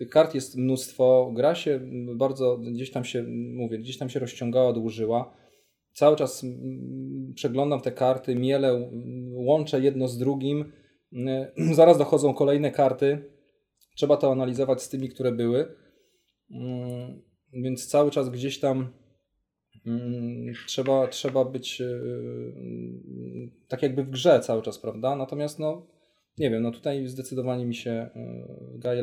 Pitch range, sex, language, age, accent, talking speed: 115-135 Hz, male, Polish, 20-39, native, 125 wpm